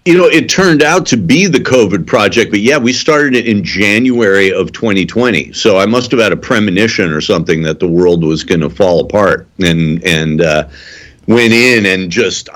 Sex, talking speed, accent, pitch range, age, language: male, 205 wpm, American, 85-105 Hz, 50-69, English